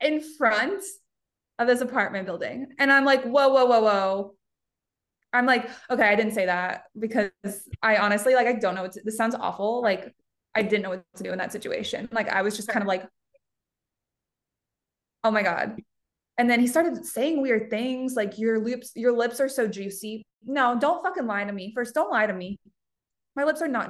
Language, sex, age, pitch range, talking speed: English, female, 20-39, 205-255 Hz, 200 wpm